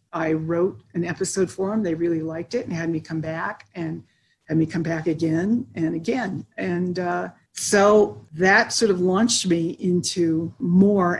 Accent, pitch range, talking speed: American, 170-210 Hz, 175 wpm